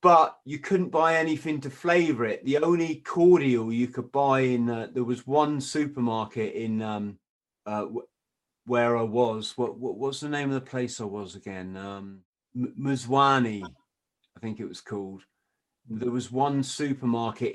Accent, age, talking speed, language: British, 30-49, 170 wpm, English